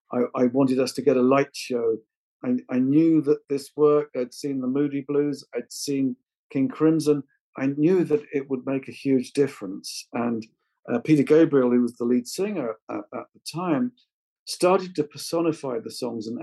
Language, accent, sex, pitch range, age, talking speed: English, British, male, 135-160 Hz, 50-69, 190 wpm